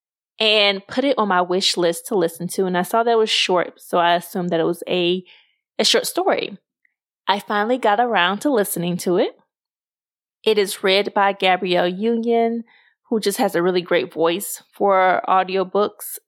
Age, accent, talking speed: 20-39, American, 185 wpm